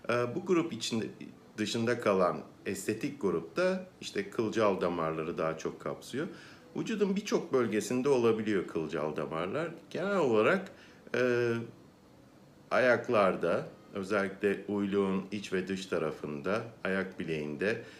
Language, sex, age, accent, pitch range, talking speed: Turkish, male, 50-69, native, 90-120 Hz, 105 wpm